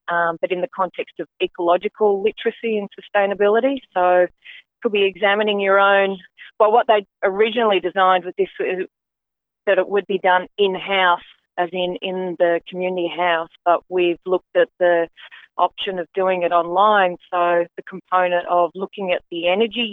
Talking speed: 165 wpm